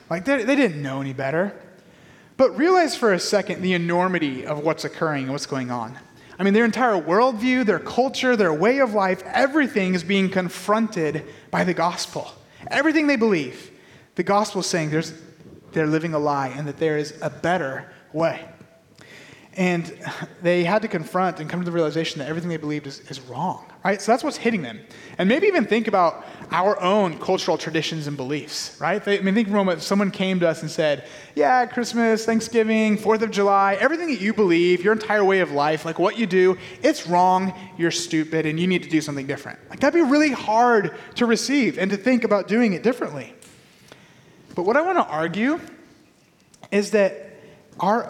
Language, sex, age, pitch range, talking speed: English, male, 30-49, 160-220 Hz, 195 wpm